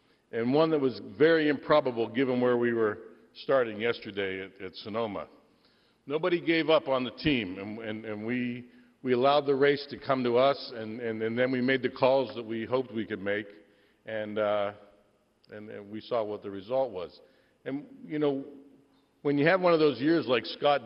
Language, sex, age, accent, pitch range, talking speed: English, male, 60-79, American, 110-135 Hz, 200 wpm